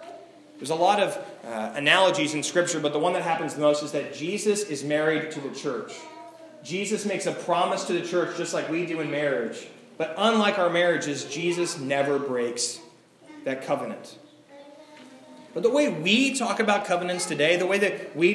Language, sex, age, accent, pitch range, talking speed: English, male, 30-49, American, 160-210 Hz, 185 wpm